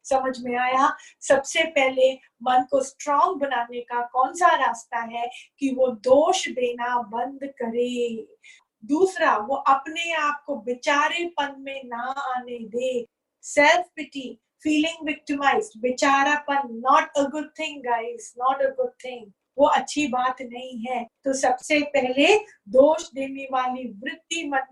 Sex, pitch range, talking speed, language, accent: female, 255-295 Hz, 140 wpm, Hindi, native